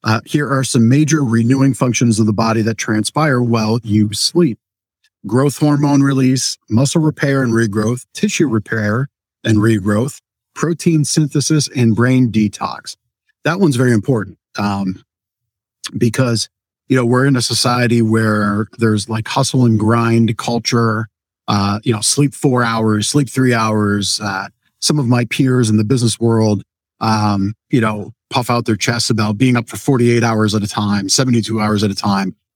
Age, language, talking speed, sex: 50-69, English, 165 wpm, male